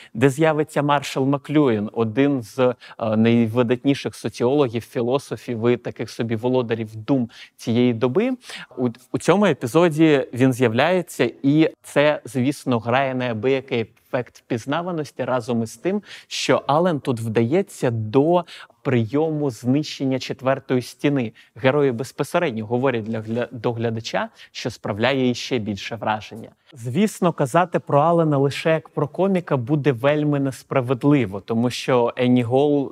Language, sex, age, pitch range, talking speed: Ukrainian, male, 30-49, 120-150 Hz, 125 wpm